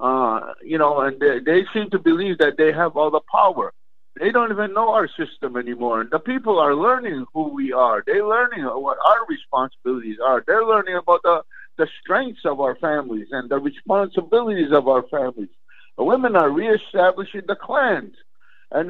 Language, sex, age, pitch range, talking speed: English, male, 60-79, 150-240 Hz, 185 wpm